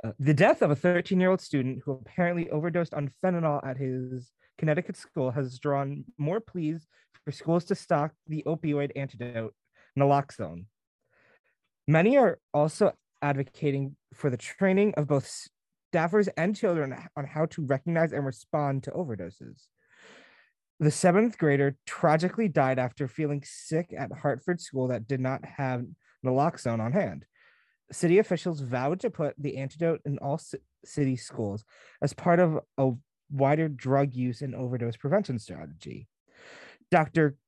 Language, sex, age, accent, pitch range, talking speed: English, male, 20-39, American, 130-165 Hz, 140 wpm